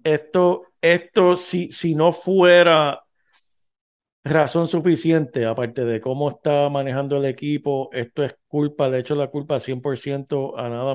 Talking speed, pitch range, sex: 135 wpm, 125-160 Hz, male